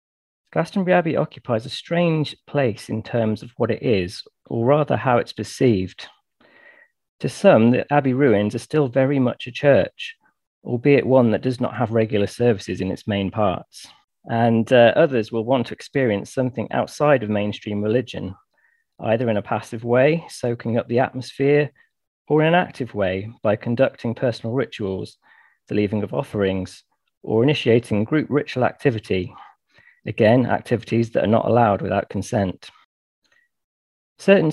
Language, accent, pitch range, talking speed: English, British, 105-135 Hz, 155 wpm